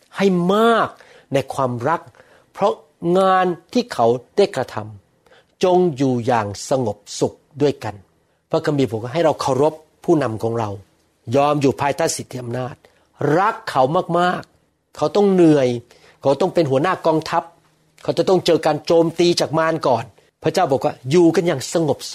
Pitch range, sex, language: 125-175 Hz, male, Thai